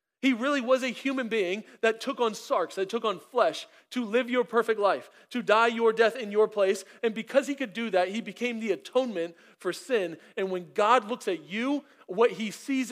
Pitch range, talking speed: 195-245 Hz, 220 wpm